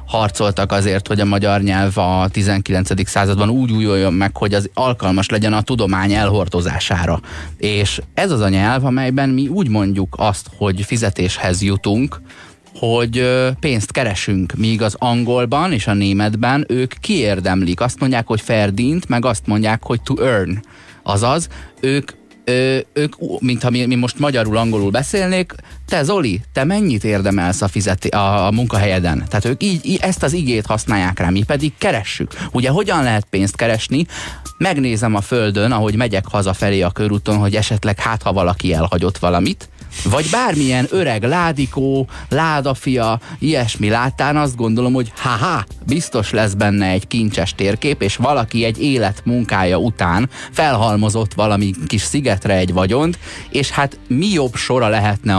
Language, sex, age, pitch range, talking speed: Hungarian, male, 30-49, 100-125 Hz, 155 wpm